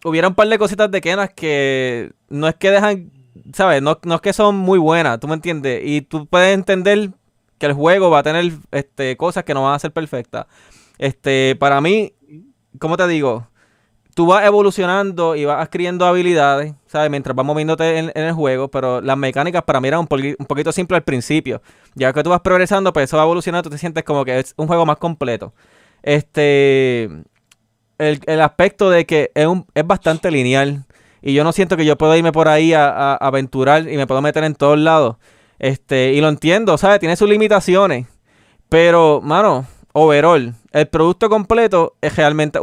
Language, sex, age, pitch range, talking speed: Spanish, male, 20-39, 140-180 Hz, 200 wpm